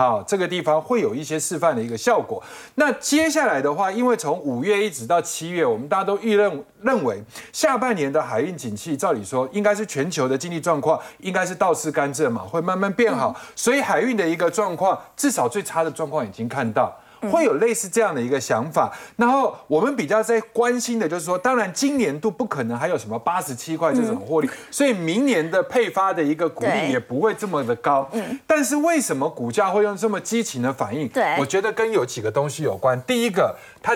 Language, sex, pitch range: Chinese, male, 150-230 Hz